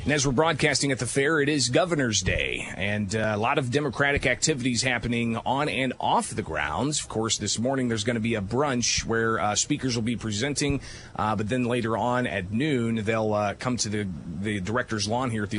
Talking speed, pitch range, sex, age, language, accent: 225 wpm, 105-130 Hz, male, 30-49, English, American